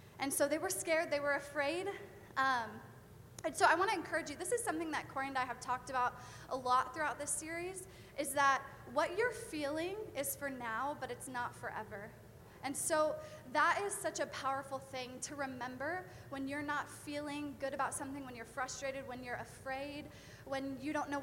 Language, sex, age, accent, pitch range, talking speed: English, female, 20-39, American, 250-300 Hz, 195 wpm